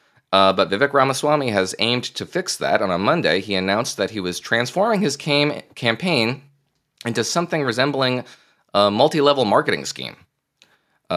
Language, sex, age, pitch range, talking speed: English, male, 30-49, 95-140 Hz, 150 wpm